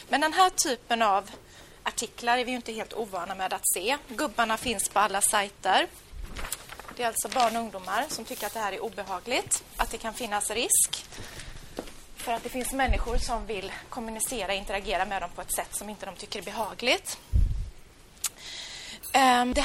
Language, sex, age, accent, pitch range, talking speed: Swedish, female, 30-49, native, 205-255 Hz, 180 wpm